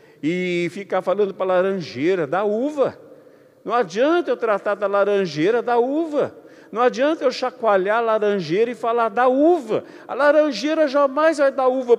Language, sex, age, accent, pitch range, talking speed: Portuguese, male, 50-69, Brazilian, 195-265 Hz, 160 wpm